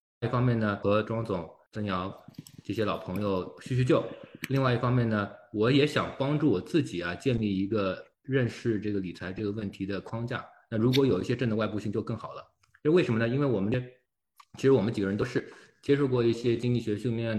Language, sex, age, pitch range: Chinese, male, 20-39, 95-125 Hz